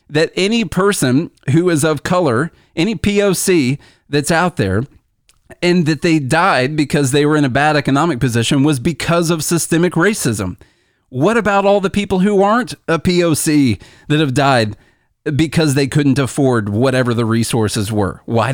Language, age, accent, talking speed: English, 30-49, American, 160 wpm